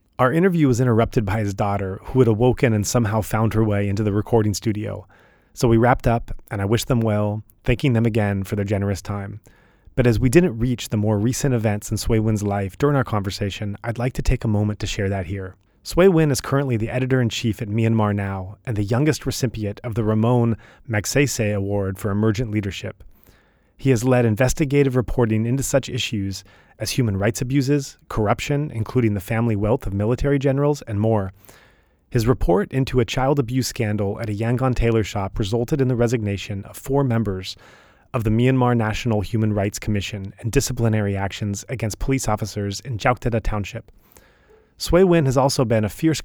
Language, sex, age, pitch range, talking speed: English, male, 30-49, 105-130 Hz, 190 wpm